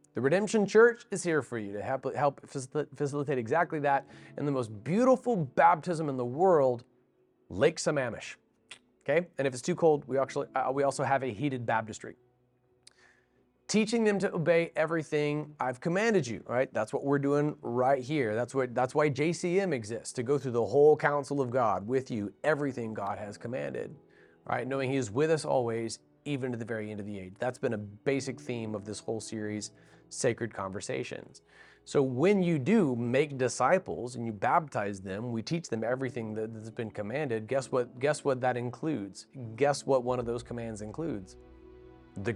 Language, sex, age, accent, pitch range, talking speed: English, male, 30-49, American, 115-150 Hz, 185 wpm